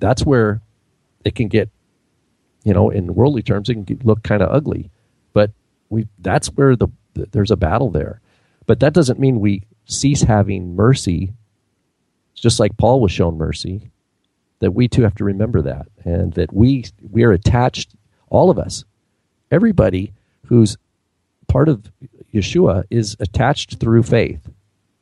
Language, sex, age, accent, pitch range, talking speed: English, male, 40-59, American, 100-125 Hz, 160 wpm